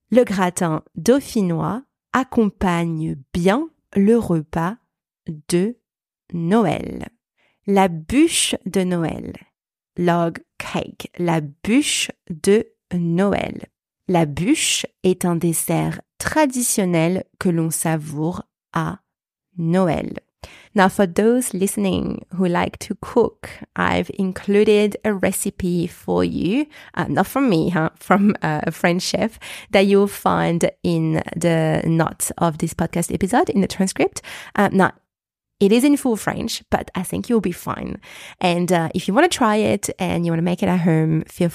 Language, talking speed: English, 135 wpm